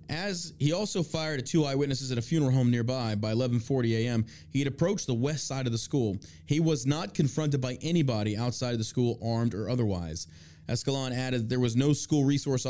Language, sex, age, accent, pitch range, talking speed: English, male, 30-49, American, 105-135 Hz, 210 wpm